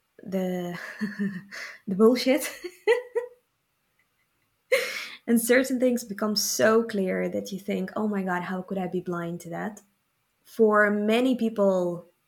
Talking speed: 120 wpm